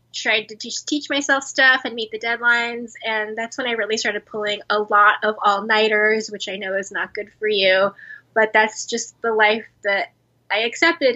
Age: 10-29